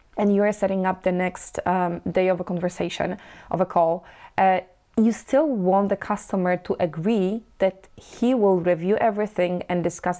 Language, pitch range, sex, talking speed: English, 180-205 Hz, female, 175 wpm